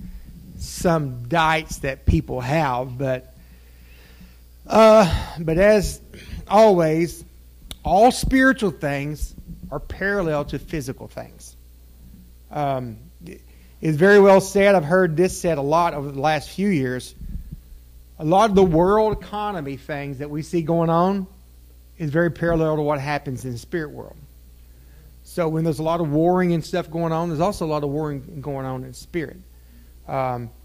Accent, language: American, English